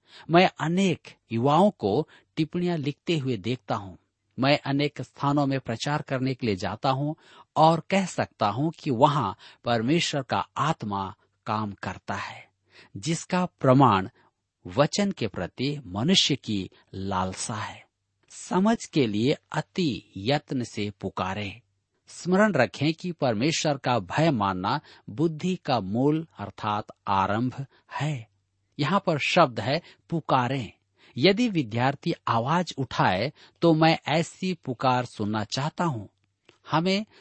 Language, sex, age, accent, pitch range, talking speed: Hindi, male, 50-69, native, 110-165 Hz, 125 wpm